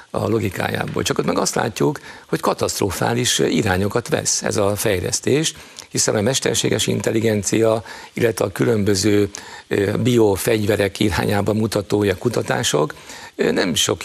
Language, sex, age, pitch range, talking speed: Hungarian, male, 50-69, 100-125 Hz, 115 wpm